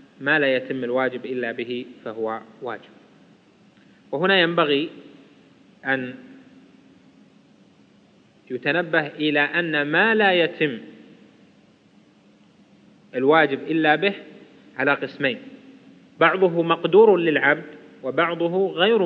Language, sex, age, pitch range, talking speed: Arabic, male, 30-49, 140-195 Hz, 85 wpm